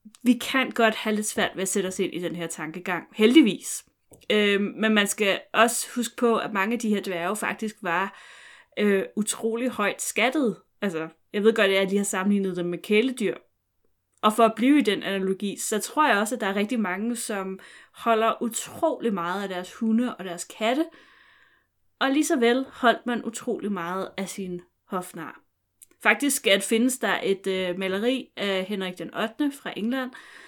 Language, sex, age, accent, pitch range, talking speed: Danish, female, 20-39, native, 195-240 Hz, 190 wpm